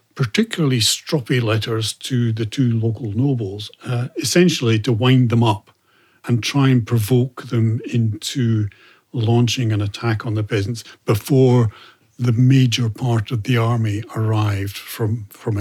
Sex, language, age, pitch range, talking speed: male, English, 60-79, 110-130 Hz, 140 wpm